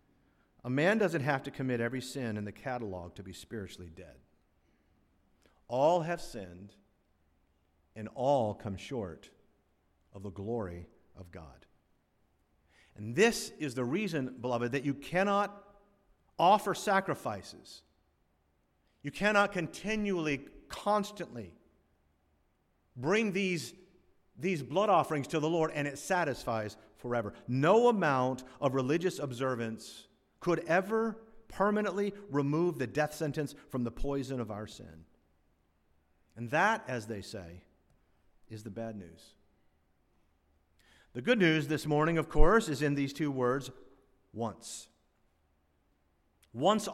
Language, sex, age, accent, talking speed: English, male, 50-69, American, 120 wpm